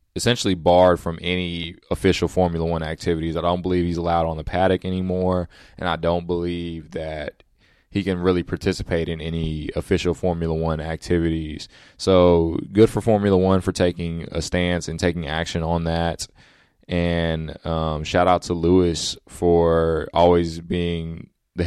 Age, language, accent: 20-39, English, American